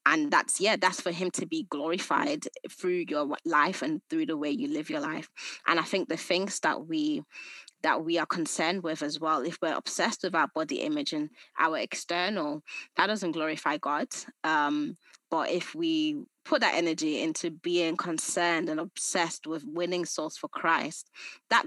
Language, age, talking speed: English, 20-39, 185 wpm